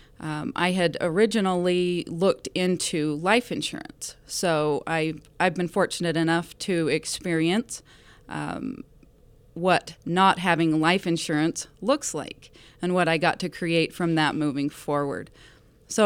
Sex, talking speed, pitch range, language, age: female, 125 wpm, 155-180 Hz, English, 30-49